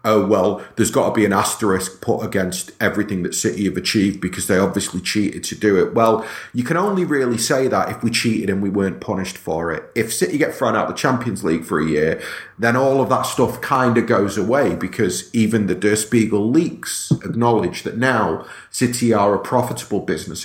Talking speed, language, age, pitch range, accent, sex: 215 wpm, English, 40-59, 95-120 Hz, British, male